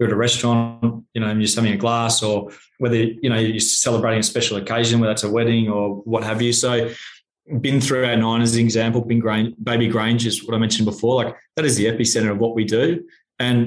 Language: English